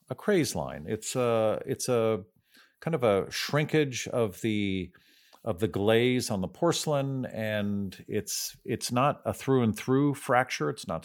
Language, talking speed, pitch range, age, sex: English, 165 wpm, 100-125 Hz, 50-69, male